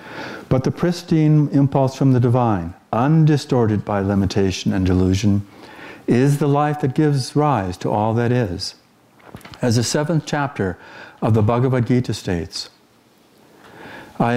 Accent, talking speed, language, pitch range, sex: American, 135 wpm, English, 105-135 Hz, male